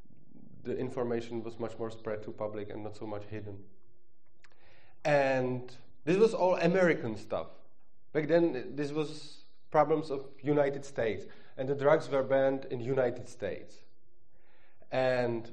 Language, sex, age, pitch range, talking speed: Czech, male, 30-49, 125-155 Hz, 140 wpm